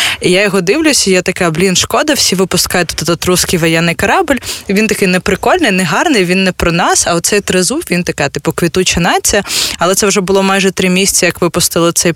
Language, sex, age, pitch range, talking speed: Ukrainian, female, 20-39, 160-185 Hz, 190 wpm